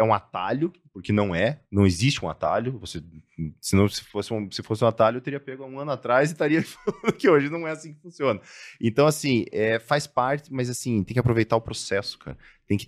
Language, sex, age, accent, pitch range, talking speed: Portuguese, male, 20-39, Brazilian, 95-125 Hz, 240 wpm